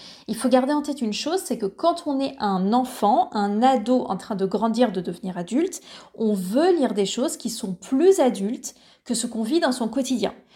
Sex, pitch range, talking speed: female, 210-285 Hz, 220 wpm